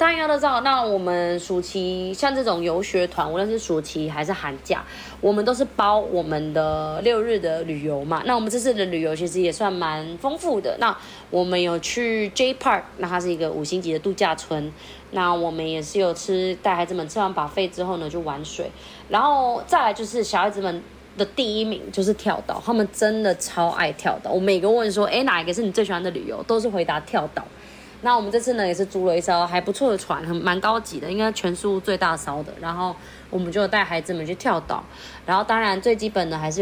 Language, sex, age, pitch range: Chinese, female, 20-39, 165-215 Hz